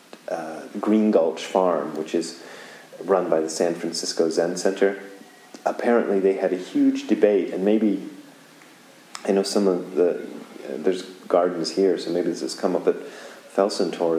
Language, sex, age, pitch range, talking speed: English, male, 30-49, 85-105 Hz, 160 wpm